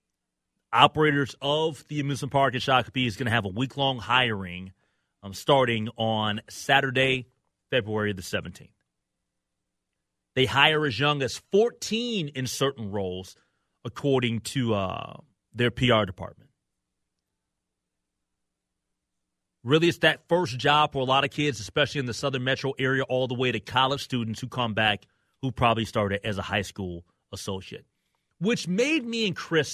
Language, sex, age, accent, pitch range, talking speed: English, male, 30-49, American, 100-165 Hz, 150 wpm